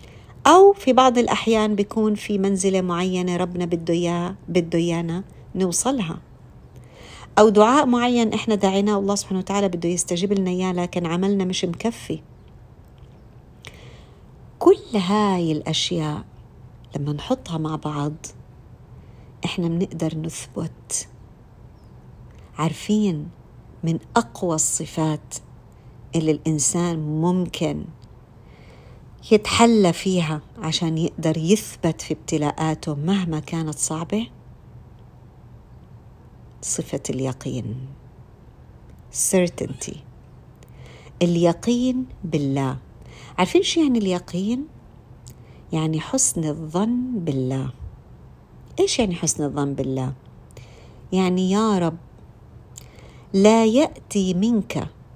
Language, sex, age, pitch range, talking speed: Arabic, female, 50-69, 140-195 Hz, 90 wpm